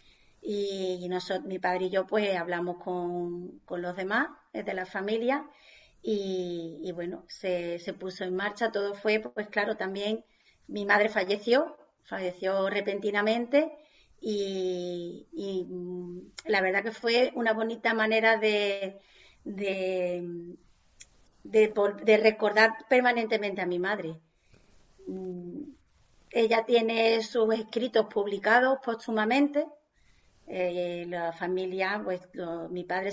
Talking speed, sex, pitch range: 115 wpm, female, 185-225 Hz